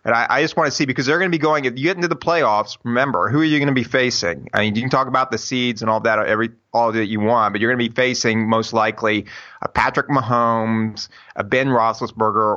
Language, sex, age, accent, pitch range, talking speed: English, male, 30-49, American, 110-125 Hz, 270 wpm